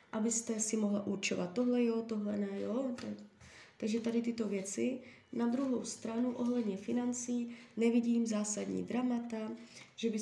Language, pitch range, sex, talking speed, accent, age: Czech, 205-235 Hz, female, 135 wpm, native, 20-39